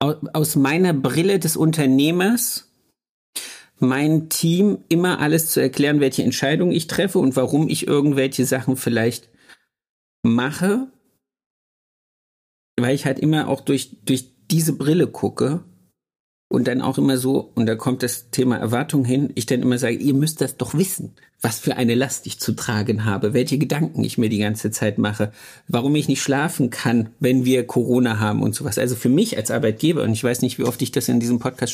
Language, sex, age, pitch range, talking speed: German, male, 50-69, 120-150 Hz, 180 wpm